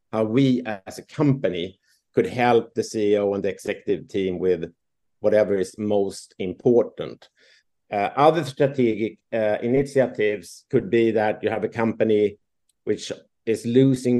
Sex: male